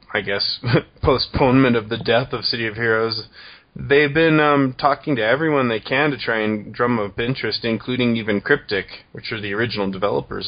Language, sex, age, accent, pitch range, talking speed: English, male, 20-39, American, 105-145 Hz, 185 wpm